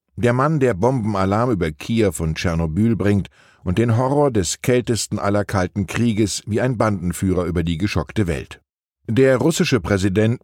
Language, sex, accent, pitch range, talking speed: German, male, German, 90-120 Hz, 155 wpm